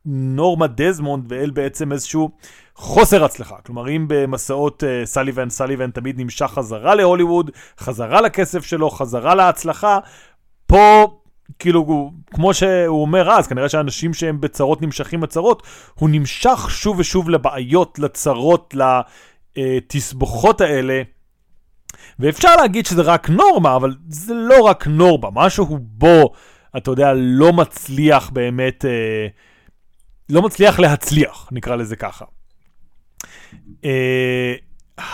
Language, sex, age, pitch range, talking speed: Hebrew, male, 30-49, 130-185 Hz, 115 wpm